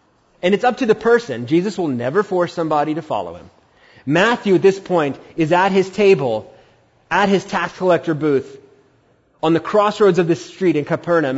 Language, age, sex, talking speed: English, 30-49, male, 185 wpm